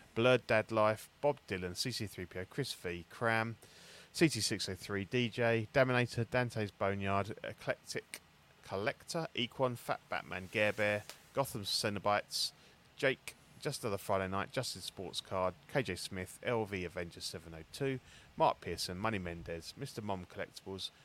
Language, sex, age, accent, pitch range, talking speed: English, male, 30-49, British, 90-115 Hz, 125 wpm